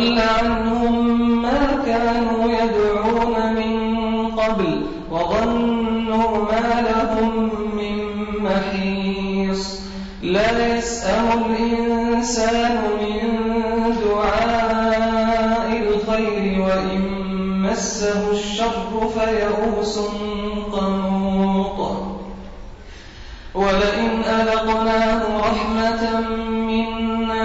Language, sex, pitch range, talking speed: Arabic, male, 210-225 Hz, 60 wpm